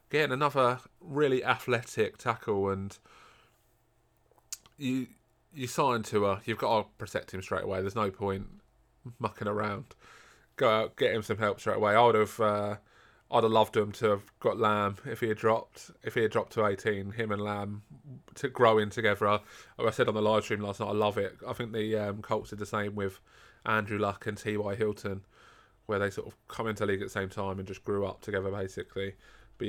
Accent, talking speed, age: British, 210 wpm, 20-39